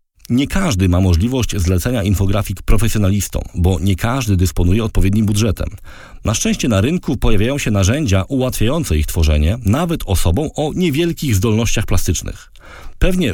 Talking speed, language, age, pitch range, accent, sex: 135 wpm, Polish, 40-59, 95-135 Hz, native, male